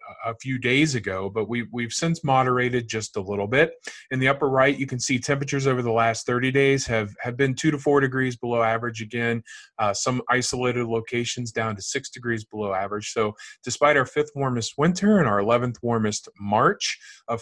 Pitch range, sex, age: 110-140 Hz, male, 30-49